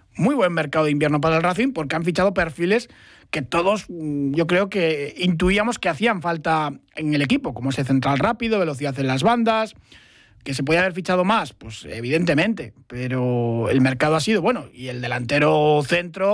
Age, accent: 30-49, Spanish